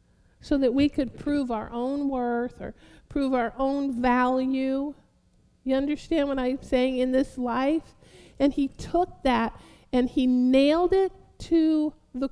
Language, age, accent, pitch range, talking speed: English, 50-69, American, 255-320 Hz, 150 wpm